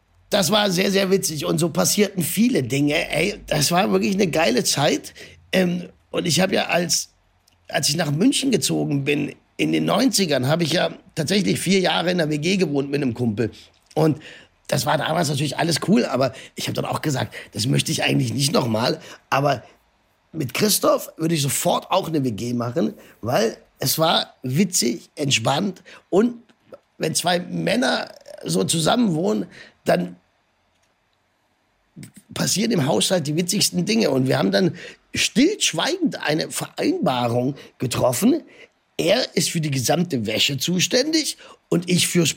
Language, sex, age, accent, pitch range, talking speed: German, male, 50-69, German, 130-195 Hz, 155 wpm